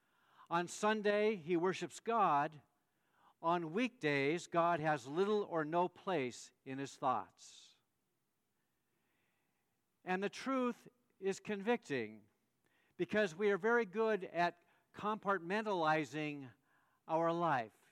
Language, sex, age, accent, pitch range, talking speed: English, male, 50-69, American, 175-225 Hz, 100 wpm